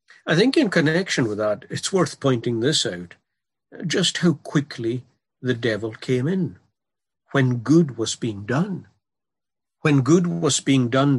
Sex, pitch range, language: male, 120-155 Hz, English